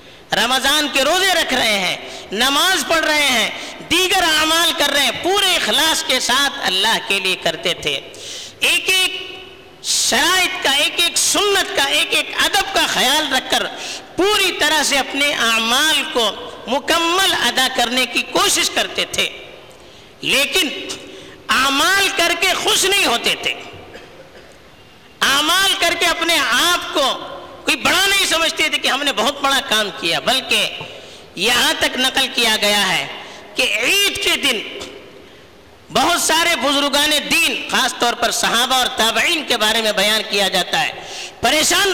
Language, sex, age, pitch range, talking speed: Urdu, female, 50-69, 260-360 Hz, 120 wpm